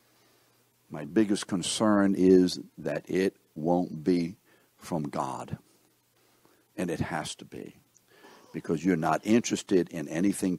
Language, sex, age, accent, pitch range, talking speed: English, male, 60-79, American, 95-115 Hz, 120 wpm